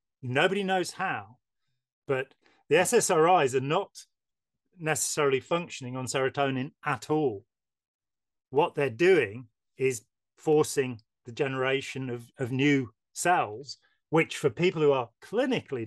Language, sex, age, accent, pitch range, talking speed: English, male, 40-59, British, 115-150 Hz, 115 wpm